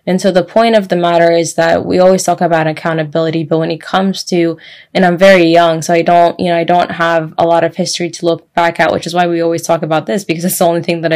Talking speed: 285 wpm